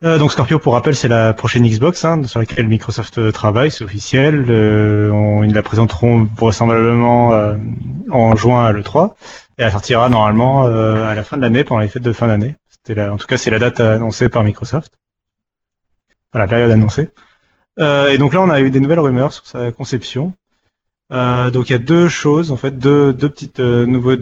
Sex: male